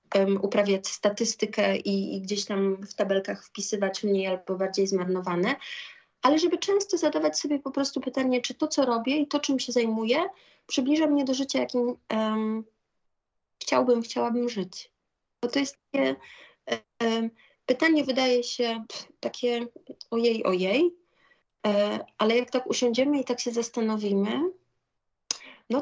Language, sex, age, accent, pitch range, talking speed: Polish, female, 30-49, native, 190-245 Hz, 130 wpm